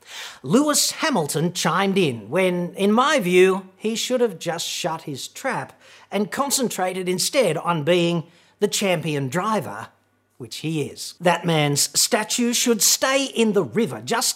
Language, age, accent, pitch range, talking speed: English, 40-59, Australian, 160-225 Hz, 145 wpm